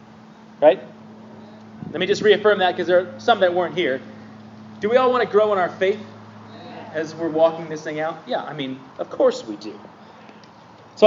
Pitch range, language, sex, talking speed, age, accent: 150-195 Hz, English, male, 195 wpm, 30-49, American